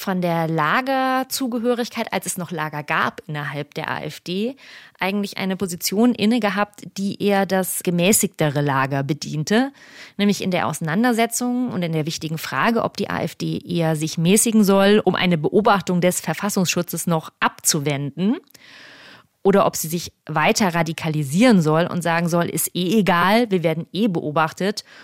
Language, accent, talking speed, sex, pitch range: German, German, 150 wpm, female, 165-200 Hz